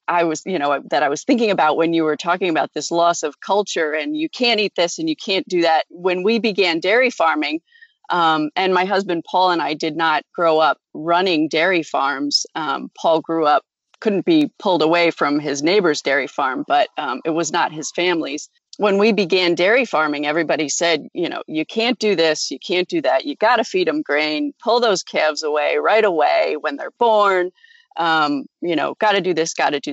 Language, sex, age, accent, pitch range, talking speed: English, female, 40-59, American, 165-235 Hz, 220 wpm